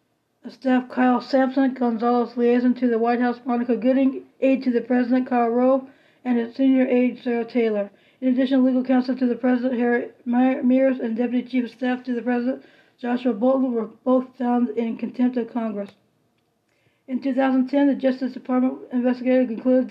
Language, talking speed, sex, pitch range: English, 170 wpm, female, 240-260 Hz